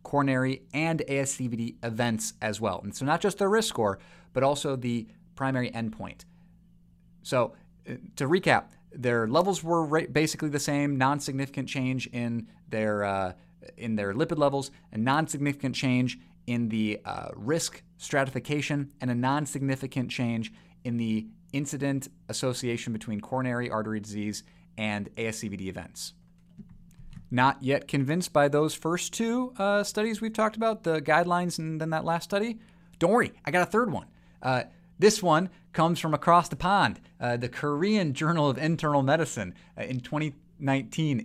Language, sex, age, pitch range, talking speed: English, male, 30-49, 120-170 Hz, 145 wpm